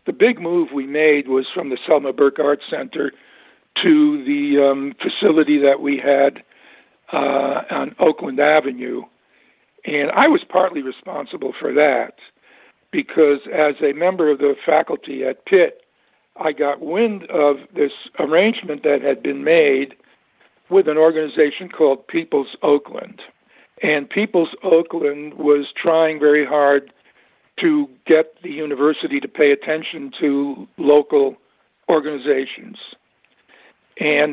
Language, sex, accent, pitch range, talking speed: English, male, American, 145-180 Hz, 130 wpm